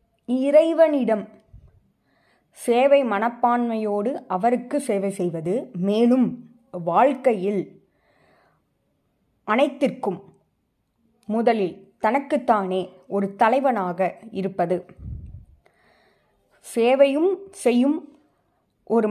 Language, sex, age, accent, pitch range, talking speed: Tamil, female, 20-39, native, 195-260 Hz, 55 wpm